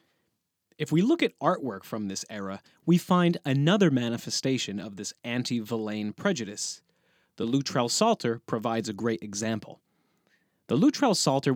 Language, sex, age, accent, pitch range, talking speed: English, male, 30-49, American, 110-145 Hz, 140 wpm